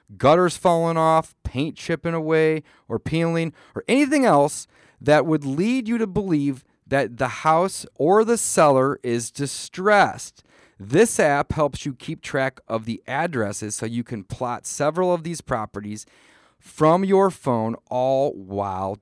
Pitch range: 125-175 Hz